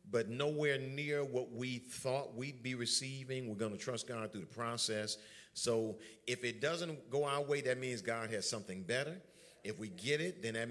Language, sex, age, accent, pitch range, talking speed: English, male, 50-69, American, 105-135 Hz, 200 wpm